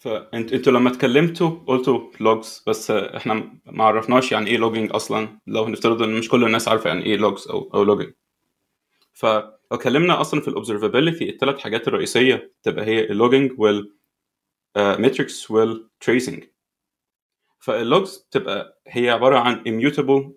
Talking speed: 135 wpm